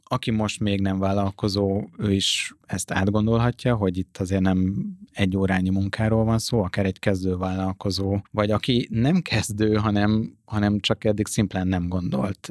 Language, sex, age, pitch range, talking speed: Hungarian, male, 30-49, 95-110 Hz, 160 wpm